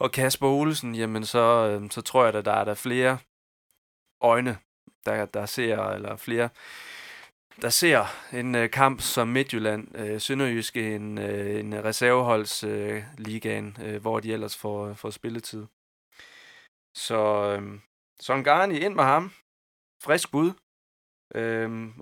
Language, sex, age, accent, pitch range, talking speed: Danish, male, 20-39, native, 105-125 Hz, 145 wpm